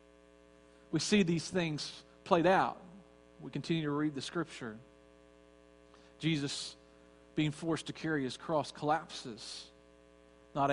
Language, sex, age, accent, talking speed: English, male, 40-59, American, 115 wpm